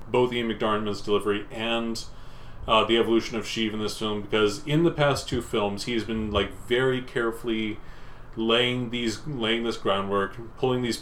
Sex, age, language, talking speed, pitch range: male, 30-49, English, 170 wpm, 105-130 Hz